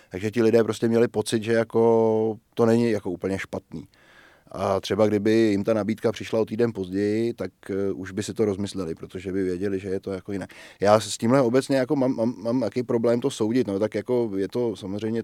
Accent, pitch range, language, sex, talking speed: native, 105-120 Hz, Czech, male, 215 wpm